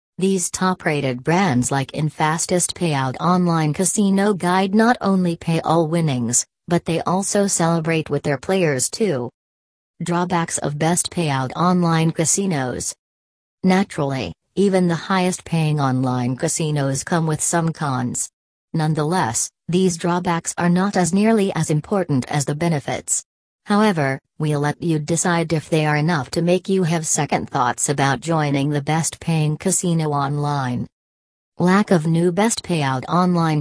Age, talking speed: 40-59, 135 wpm